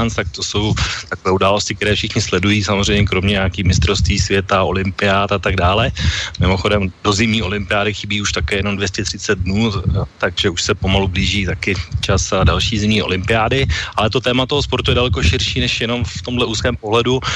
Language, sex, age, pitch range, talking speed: Slovak, male, 30-49, 95-110 Hz, 180 wpm